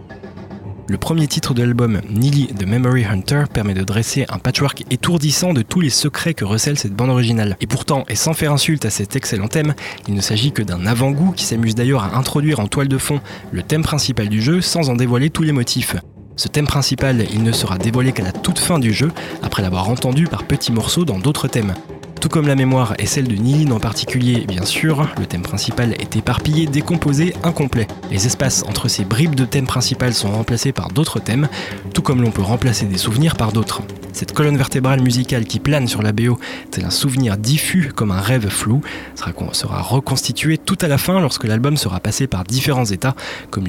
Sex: male